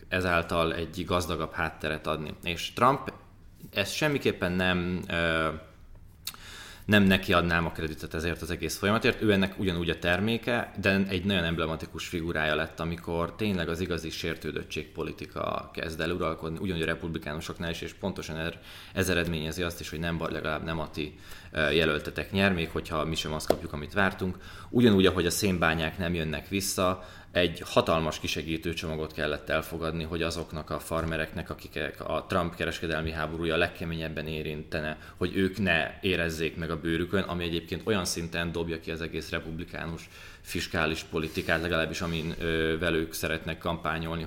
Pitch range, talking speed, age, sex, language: 80-95 Hz, 150 wpm, 20-39, male, Hungarian